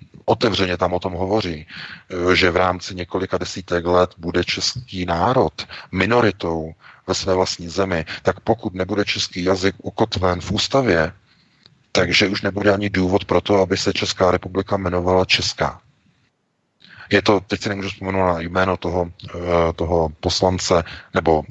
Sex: male